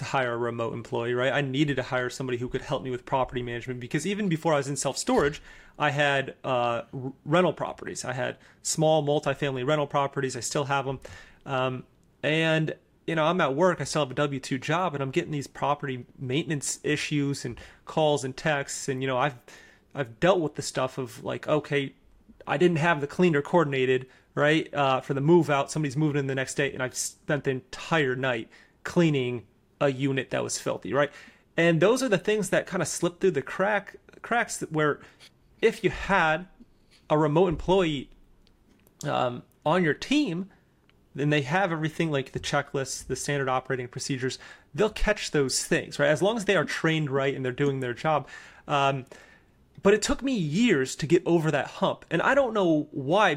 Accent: American